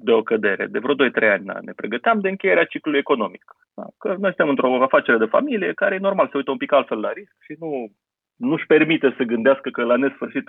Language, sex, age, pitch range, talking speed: Romanian, male, 30-49, 110-150 Hz, 225 wpm